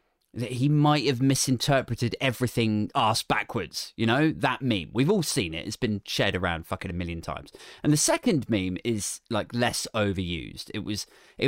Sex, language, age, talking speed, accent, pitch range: male, English, 30-49, 185 wpm, British, 110-165 Hz